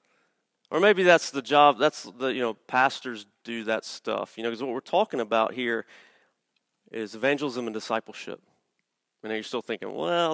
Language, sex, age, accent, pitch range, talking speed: English, male, 30-49, American, 115-155 Hz, 175 wpm